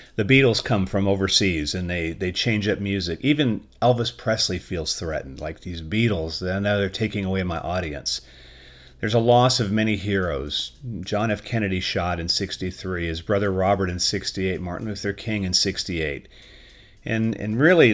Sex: male